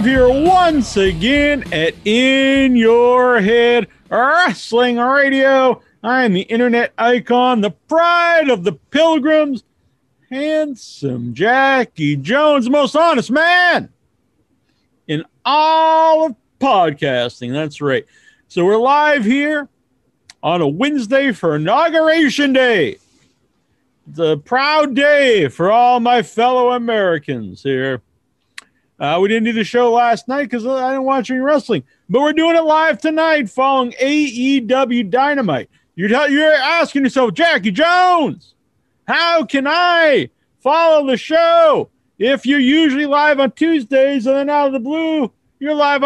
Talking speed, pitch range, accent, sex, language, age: 130 wpm, 240-310 Hz, American, male, English, 50-69